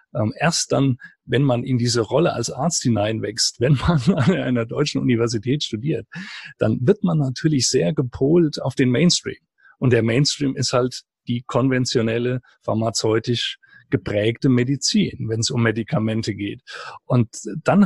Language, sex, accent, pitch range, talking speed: German, male, German, 120-150 Hz, 145 wpm